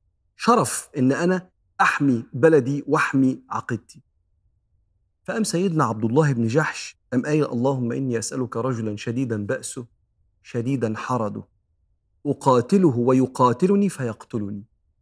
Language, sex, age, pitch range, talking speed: Arabic, male, 50-69, 110-145 Hz, 105 wpm